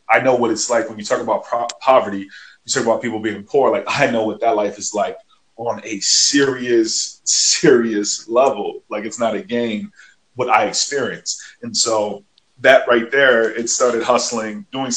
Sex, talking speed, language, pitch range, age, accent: male, 185 wpm, English, 105-125 Hz, 20-39, American